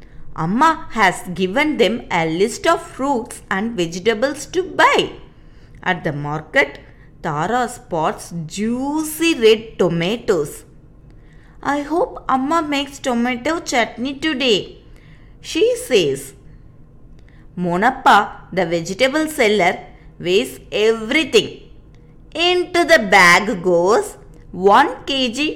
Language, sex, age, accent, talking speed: Tamil, female, 20-39, native, 95 wpm